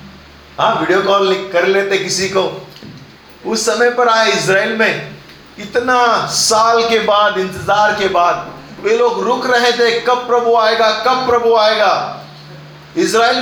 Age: 40-59